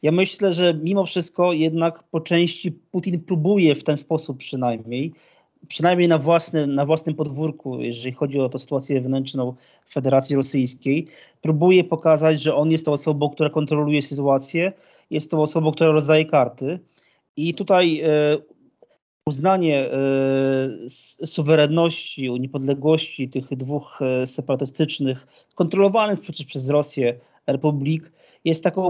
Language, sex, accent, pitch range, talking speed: Polish, male, native, 145-165 Hz, 120 wpm